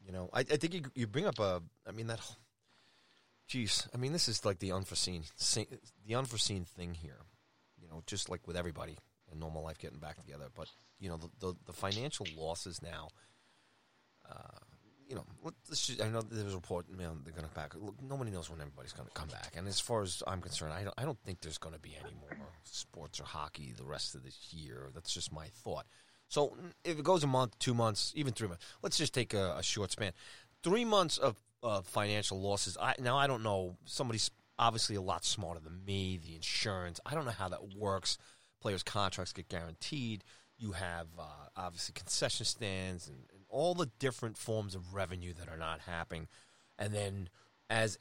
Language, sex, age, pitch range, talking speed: English, male, 30-49, 85-115 Hz, 215 wpm